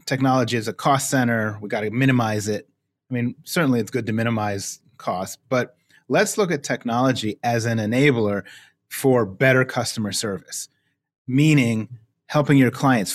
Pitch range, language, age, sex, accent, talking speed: 120-165 Hz, English, 30-49, male, American, 155 wpm